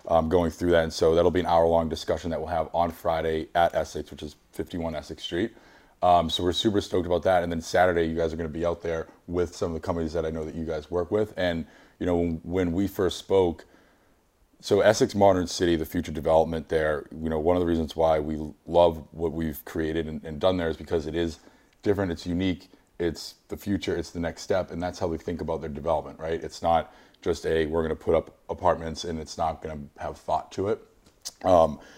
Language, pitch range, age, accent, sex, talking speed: English, 80-90 Hz, 30-49, American, male, 235 wpm